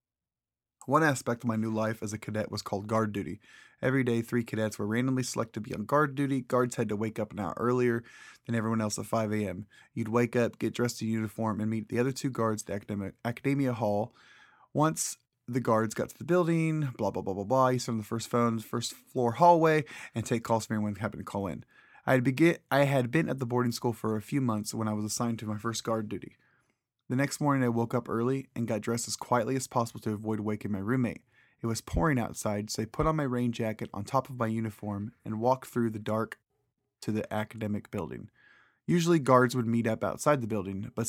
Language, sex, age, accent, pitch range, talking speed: English, male, 20-39, American, 110-130 Hz, 240 wpm